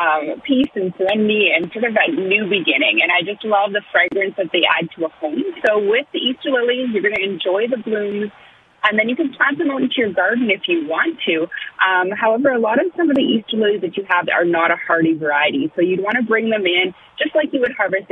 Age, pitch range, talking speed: 30-49, 185-255 Hz, 255 wpm